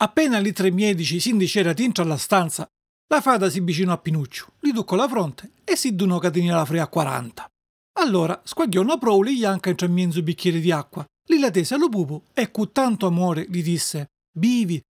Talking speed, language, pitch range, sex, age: 215 wpm, Italian, 170-230 Hz, male, 40-59